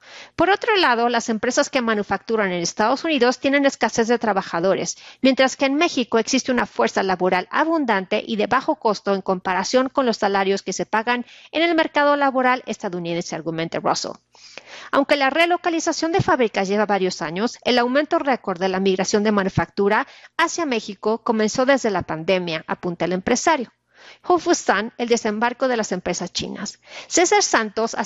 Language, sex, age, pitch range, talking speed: Spanish, female, 40-59, 200-265 Hz, 165 wpm